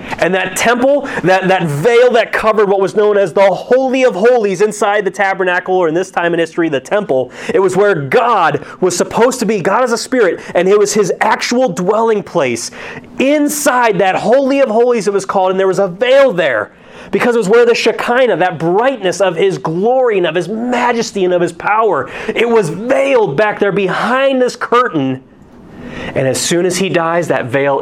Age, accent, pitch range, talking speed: 30-49, American, 150-225 Hz, 205 wpm